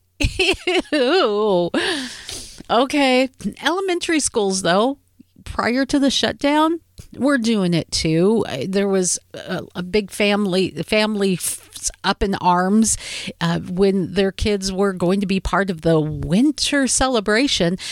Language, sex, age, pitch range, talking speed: English, female, 50-69, 175-230 Hz, 120 wpm